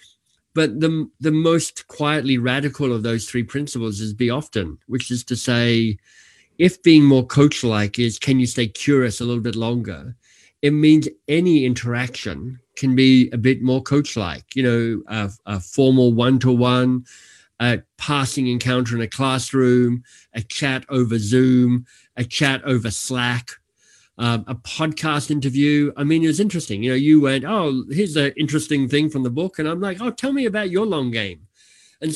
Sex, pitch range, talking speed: male, 120-145 Hz, 170 wpm